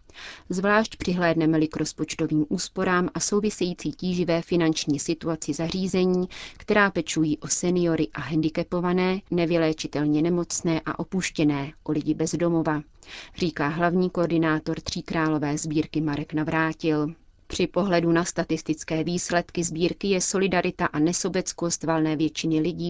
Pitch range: 155-175 Hz